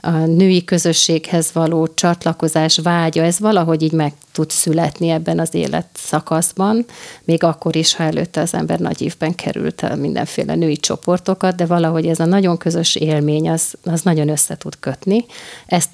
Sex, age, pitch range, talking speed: female, 30-49, 160-185 Hz, 165 wpm